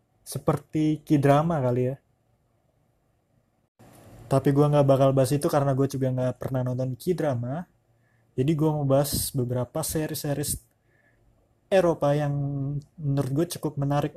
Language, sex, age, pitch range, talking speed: Indonesian, male, 20-39, 125-155 Hz, 130 wpm